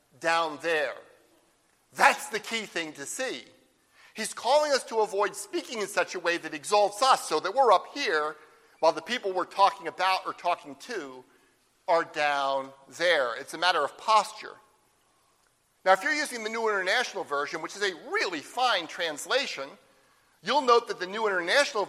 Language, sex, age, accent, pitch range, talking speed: English, male, 50-69, American, 175-260 Hz, 175 wpm